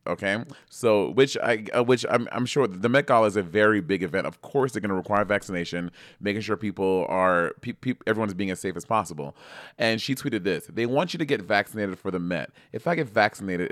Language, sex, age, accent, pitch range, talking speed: English, male, 30-49, American, 95-125 Hz, 230 wpm